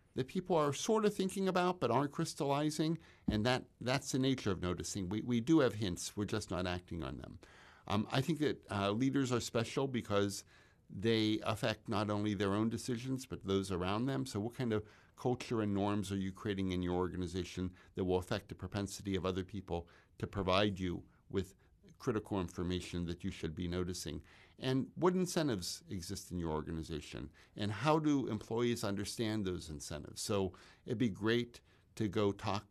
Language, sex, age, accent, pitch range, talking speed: English, male, 60-79, American, 90-115 Hz, 185 wpm